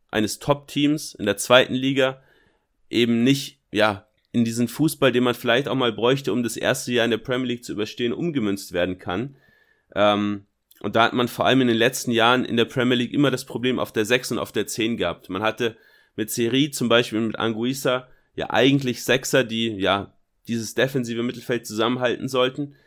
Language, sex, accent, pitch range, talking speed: German, male, German, 110-130 Hz, 200 wpm